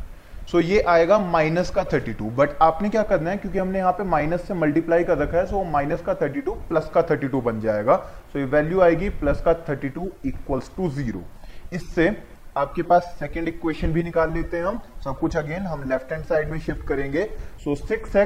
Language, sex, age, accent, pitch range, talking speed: English, male, 20-39, Indian, 140-175 Hz, 210 wpm